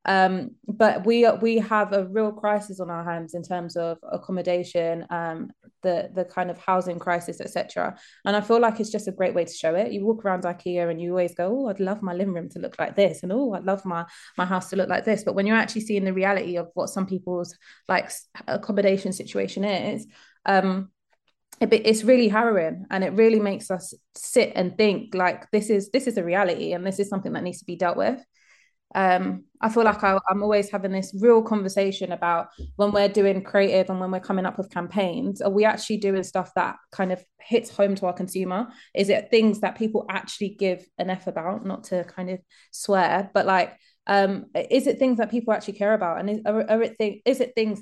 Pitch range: 180-215 Hz